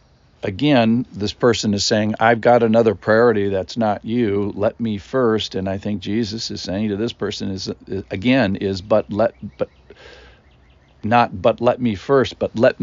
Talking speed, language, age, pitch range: 175 wpm, English, 50-69, 95-115 Hz